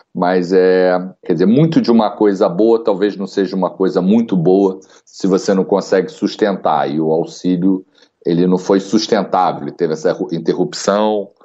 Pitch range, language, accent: 85-105 Hz, Portuguese, Brazilian